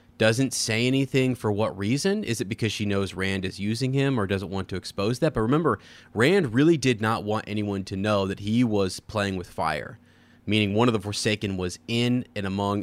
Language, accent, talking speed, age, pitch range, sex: English, American, 215 wpm, 20-39, 95-115 Hz, male